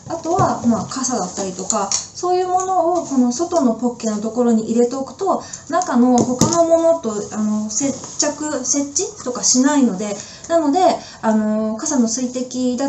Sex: female